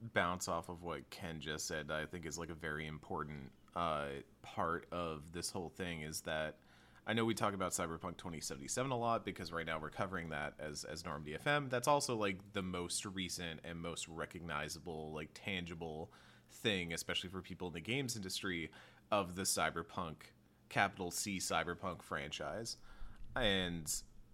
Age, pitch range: 30-49, 80-100 Hz